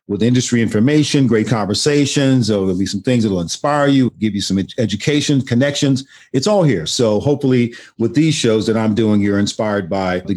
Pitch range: 100-125 Hz